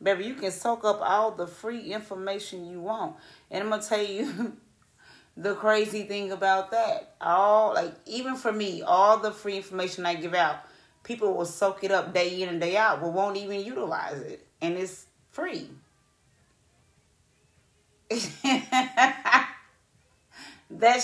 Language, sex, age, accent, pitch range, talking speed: English, female, 30-49, American, 175-230 Hz, 150 wpm